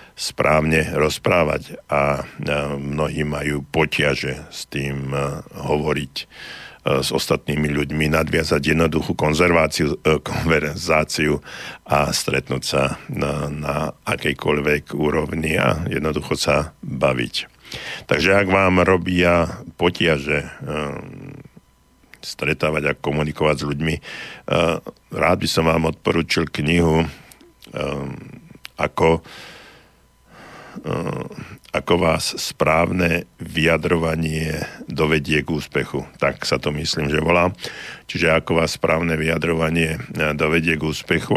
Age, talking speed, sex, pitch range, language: 60-79, 95 wpm, male, 75-80 Hz, Slovak